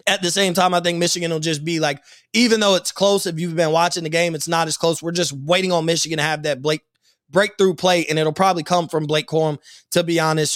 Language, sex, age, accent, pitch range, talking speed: English, male, 20-39, American, 160-220 Hz, 260 wpm